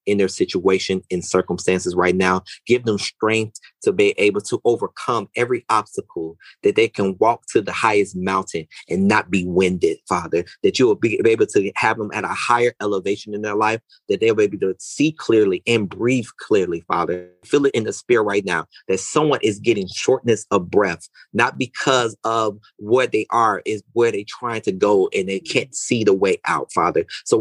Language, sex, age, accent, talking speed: English, male, 30-49, American, 200 wpm